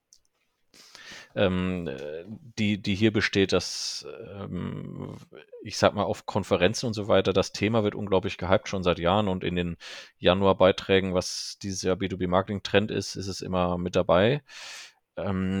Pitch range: 90-105 Hz